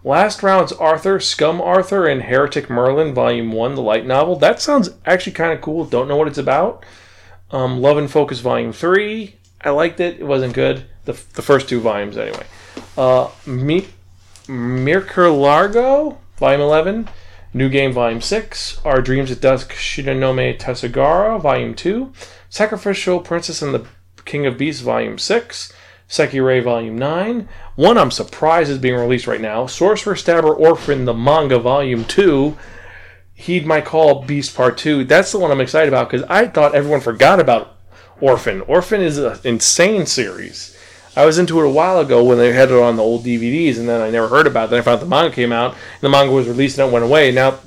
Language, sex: English, male